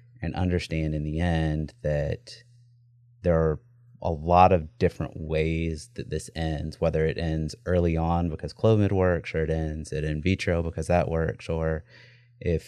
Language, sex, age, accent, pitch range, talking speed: English, male, 30-49, American, 80-115 Hz, 160 wpm